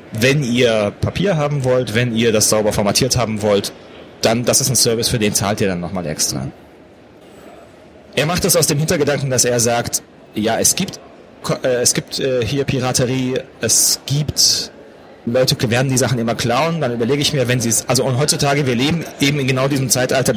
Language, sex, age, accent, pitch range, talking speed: German, male, 30-49, German, 115-145 Hz, 195 wpm